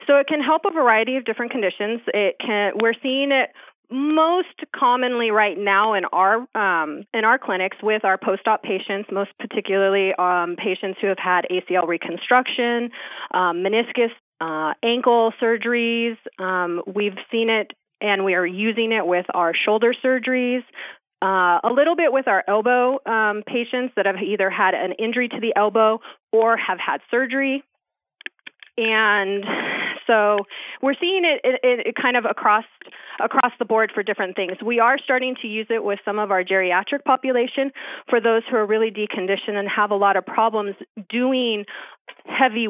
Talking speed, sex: 165 wpm, female